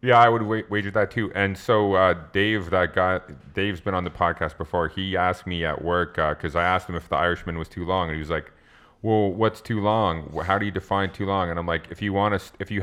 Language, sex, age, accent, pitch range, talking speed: English, male, 30-49, American, 80-105 Hz, 265 wpm